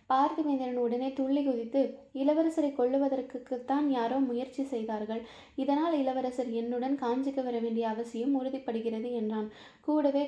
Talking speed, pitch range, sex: 110 wpm, 235-270 Hz, female